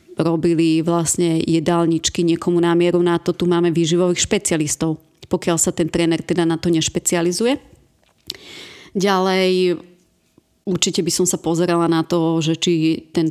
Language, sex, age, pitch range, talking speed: Slovak, female, 30-49, 170-190 Hz, 135 wpm